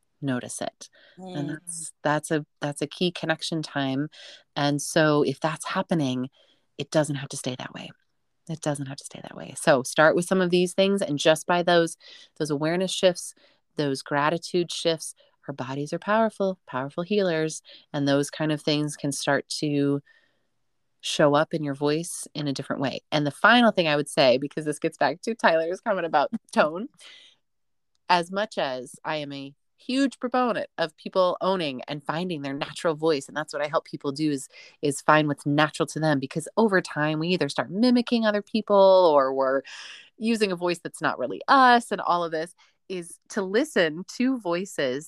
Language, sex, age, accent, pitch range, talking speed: English, female, 30-49, American, 145-190 Hz, 190 wpm